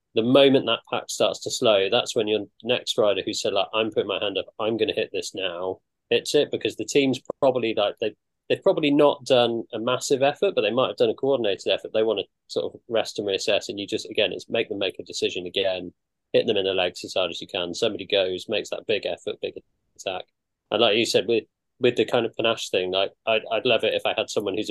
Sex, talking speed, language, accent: male, 255 wpm, English, British